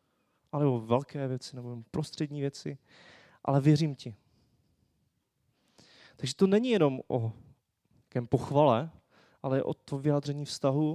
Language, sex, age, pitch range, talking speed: Czech, male, 20-39, 120-150 Hz, 125 wpm